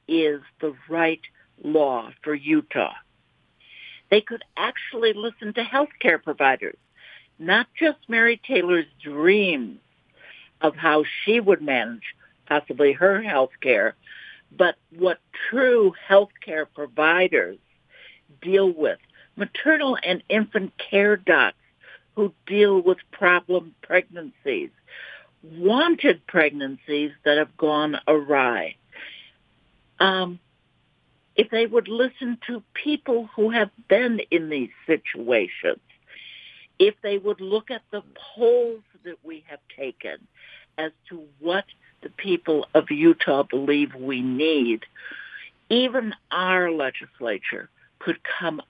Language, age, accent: English, 60-79, American